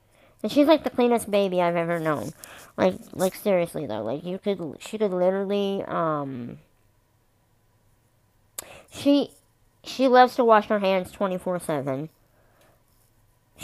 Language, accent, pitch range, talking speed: English, American, 120-200 Hz, 125 wpm